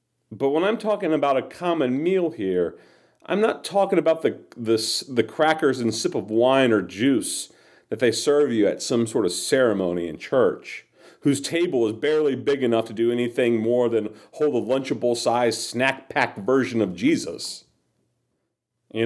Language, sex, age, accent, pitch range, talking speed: English, male, 40-59, American, 110-135 Hz, 175 wpm